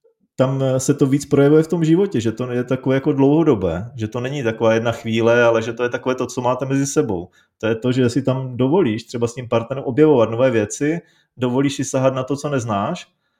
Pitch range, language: 120-155 Hz, Czech